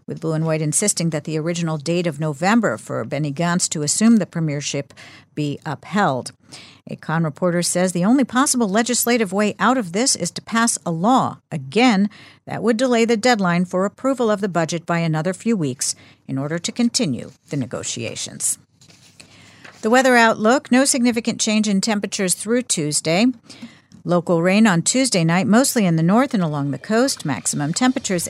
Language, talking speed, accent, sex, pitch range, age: English, 175 wpm, American, female, 160-235 Hz, 50-69